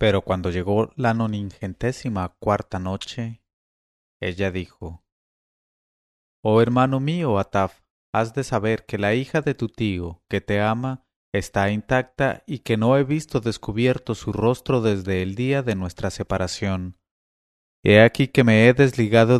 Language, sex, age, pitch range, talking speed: English, male, 30-49, 95-125 Hz, 145 wpm